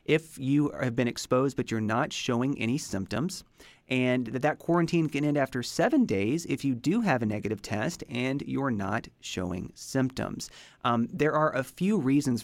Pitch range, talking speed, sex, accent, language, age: 115-145 Hz, 185 wpm, male, American, English, 30-49